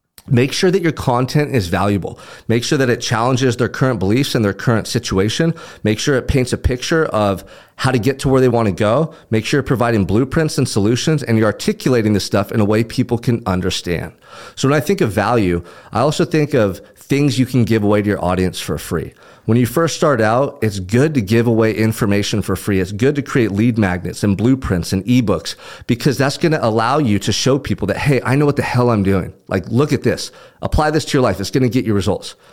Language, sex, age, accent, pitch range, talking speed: English, male, 40-59, American, 105-140 Hz, 230 wpm